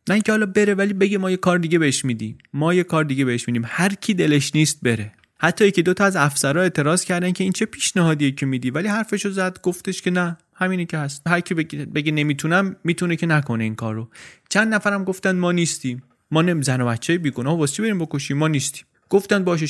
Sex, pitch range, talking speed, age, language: male, 125-180 Hz, 220 wpm, 30-49, Persian